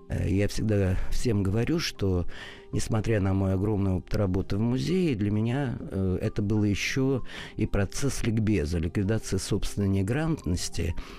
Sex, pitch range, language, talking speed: male, 95-110 Hz, Russian, 130 wpm